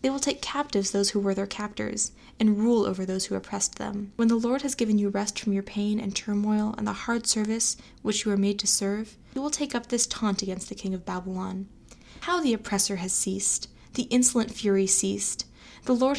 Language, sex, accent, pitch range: English, female, American, 200-235 Hz